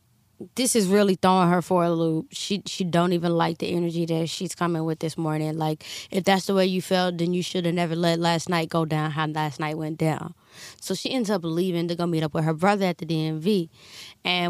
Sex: female